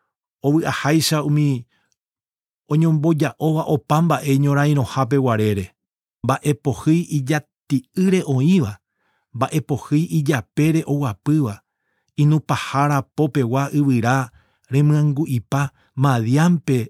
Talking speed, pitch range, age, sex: 120 wpm, 135-155 Hz, 50-69, male